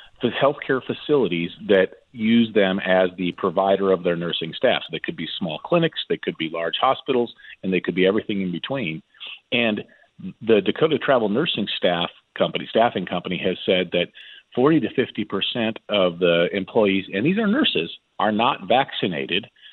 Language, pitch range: English, 95-120 Hz